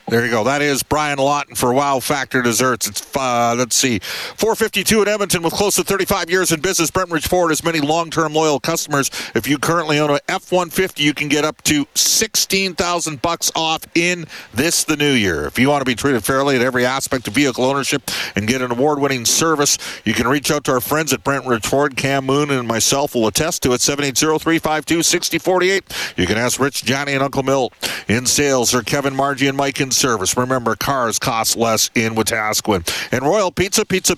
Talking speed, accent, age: 200 wpm, American, 50-69